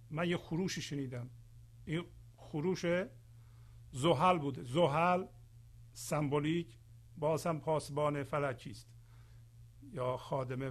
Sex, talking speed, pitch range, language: male, 90 wpm, 115-165 Hz, Persian